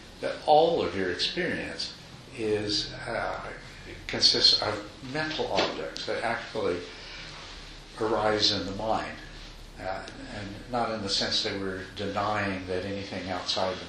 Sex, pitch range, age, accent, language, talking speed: male, 90-115 Hz, 60-79, American, English, 130 wpm